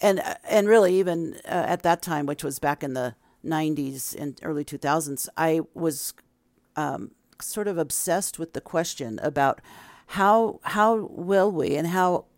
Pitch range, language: 150-185 Hz, English